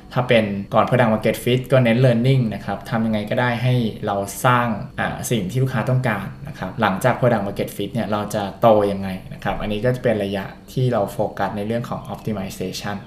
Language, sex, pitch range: Thai, male, 100-125 Hz